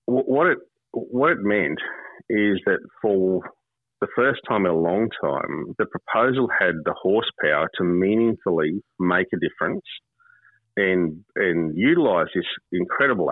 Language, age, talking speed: English, 40-59, 135 wpm